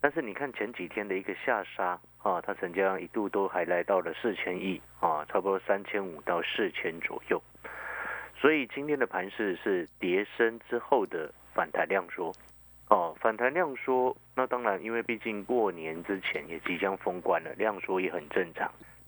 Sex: male